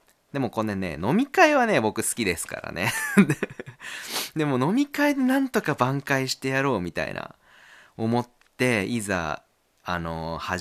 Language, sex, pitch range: Japanese, male, 95-155 Hz